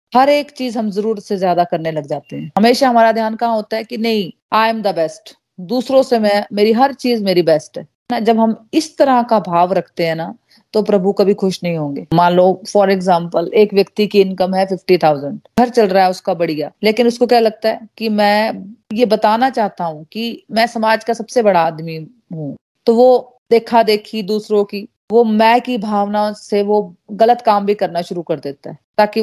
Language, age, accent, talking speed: Hindi, 30-49, native, 215 wpm